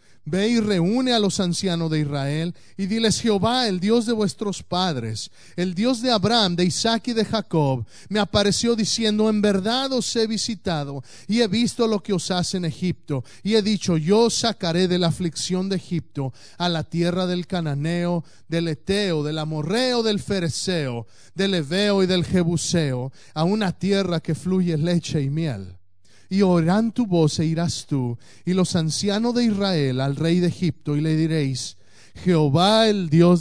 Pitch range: 145-205 Hz